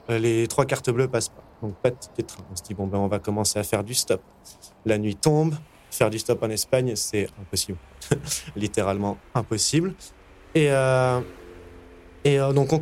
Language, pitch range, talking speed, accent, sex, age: French, 110-140 Hz, 185 wpm, French, male, 20-39